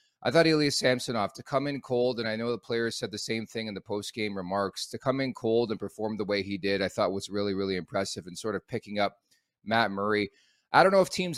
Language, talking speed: English, 265 wpm